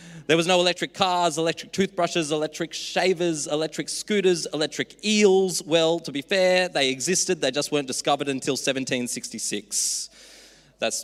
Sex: male